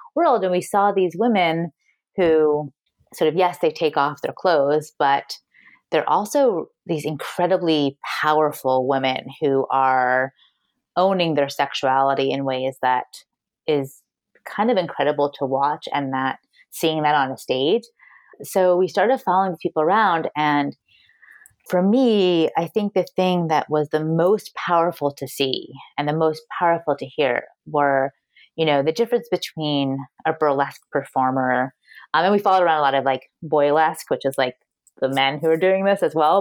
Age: 30-49